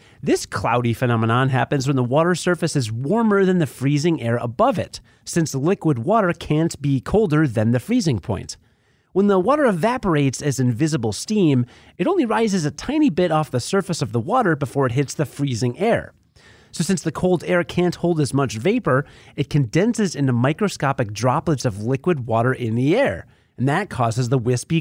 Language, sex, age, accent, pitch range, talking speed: English, male, 30-49, American, 125-185 Hz, 185 wpm